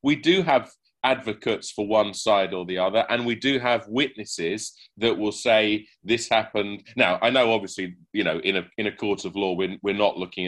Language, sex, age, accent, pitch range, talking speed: English, male, 40-59, British, 95-120 Hz, 210 wpm